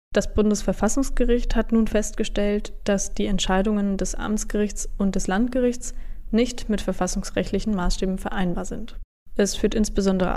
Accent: German